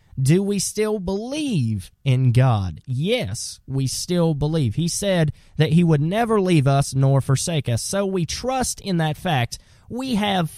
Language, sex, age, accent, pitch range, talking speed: English, male, 20-39, American, 125-185 Hz, 165 wpm